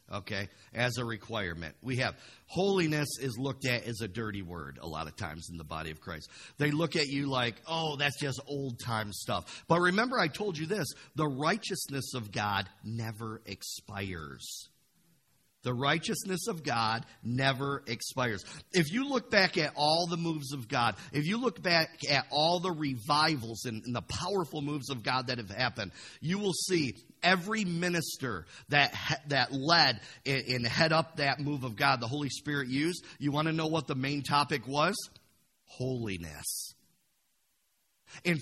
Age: 50-69